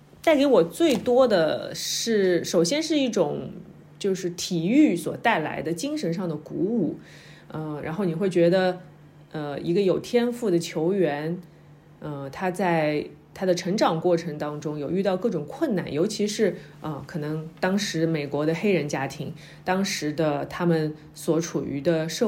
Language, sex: Chinese, female